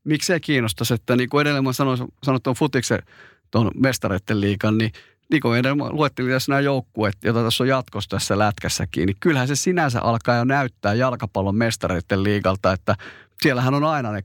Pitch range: 105-130 Hz